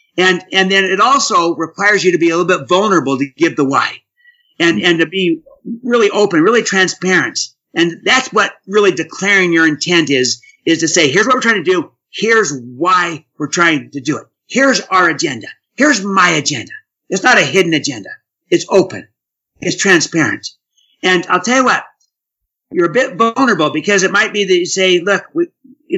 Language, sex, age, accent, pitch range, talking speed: English, male, 50-69, American, 170-235 Hz, 190 wpm